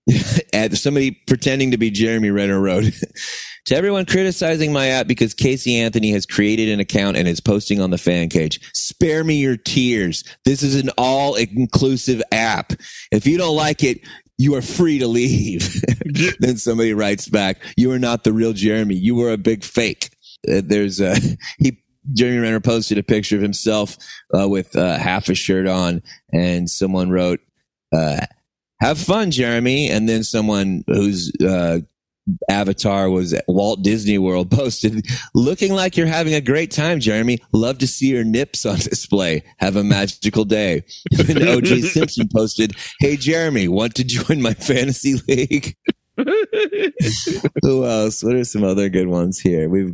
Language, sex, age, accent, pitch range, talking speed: English, male, 30-49, American, 95-135 Hz, 165 wpm